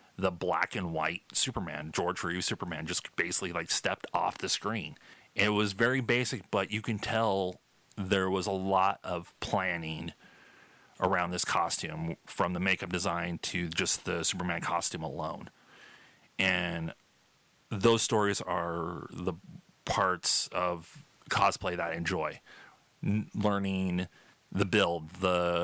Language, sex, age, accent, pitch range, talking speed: English, male, 30-49, American, 90-110 Hz, 135 wpm